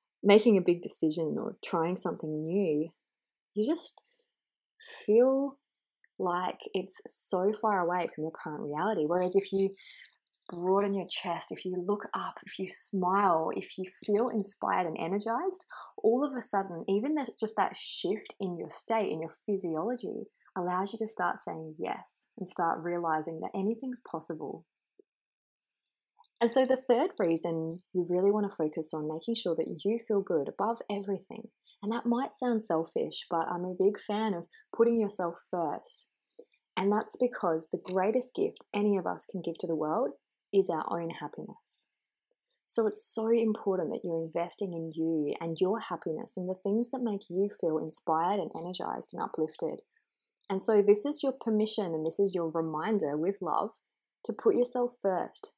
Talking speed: 170 wpm